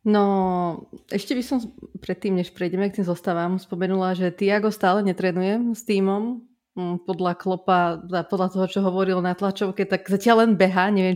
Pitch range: 185-210 Hz